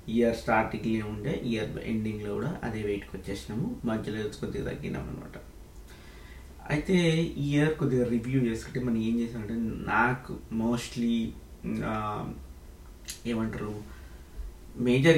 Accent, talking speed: native, 105 wpm